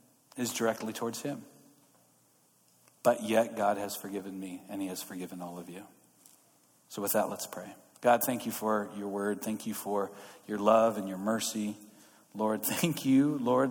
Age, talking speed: 40-59, 175 wpm